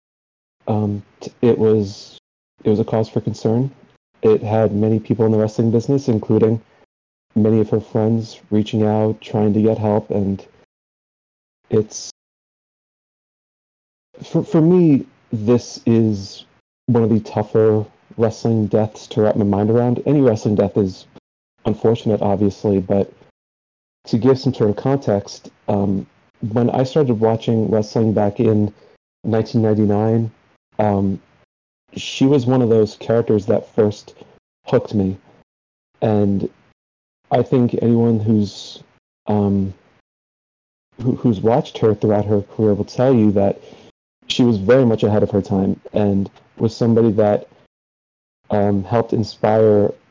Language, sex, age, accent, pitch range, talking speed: English, male, 40-59, American, 105-115 Hz, 135 wpm